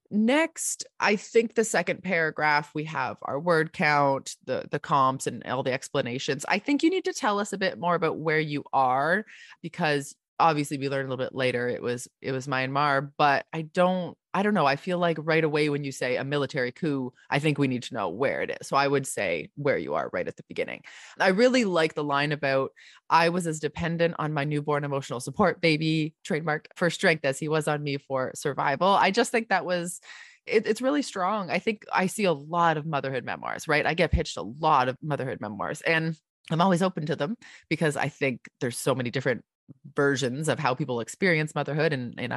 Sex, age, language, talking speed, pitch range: female, 20-39, English, 220 wpm, 140-180 Hz